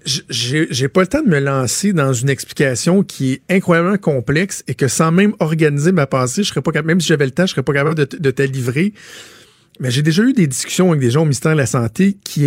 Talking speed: 260 wpm